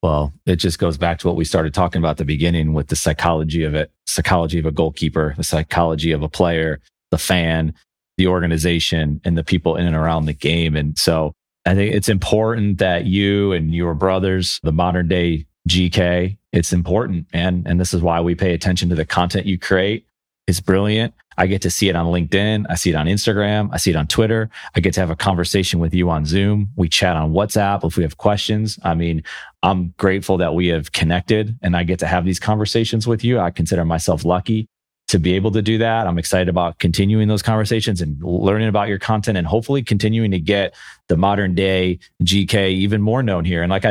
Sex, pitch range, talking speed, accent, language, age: male, 85-100 Hz, 215 wpm, American, English, 30-49